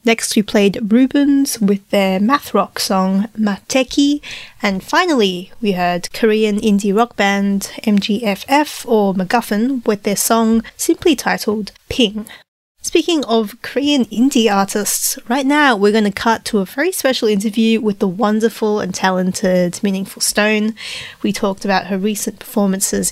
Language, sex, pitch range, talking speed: English, female, 200-245 Hz, 145 wpm